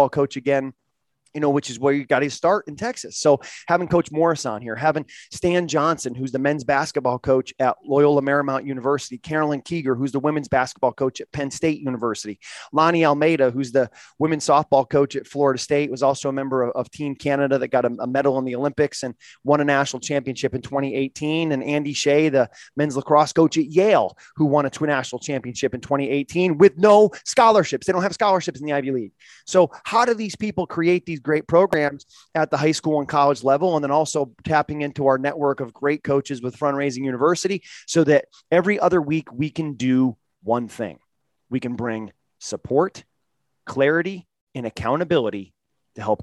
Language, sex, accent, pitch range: English, male, American, 130-155 Hz